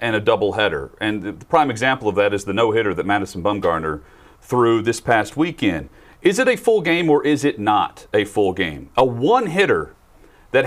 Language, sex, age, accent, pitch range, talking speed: English, male, 40-59, American, 130-210 Hz, 195 wpm